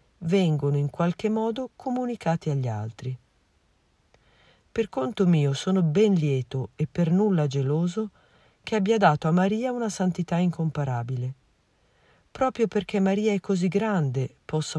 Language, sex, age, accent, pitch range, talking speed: Italian, female, 50-69, native, 135-200 Hz, 130 wpm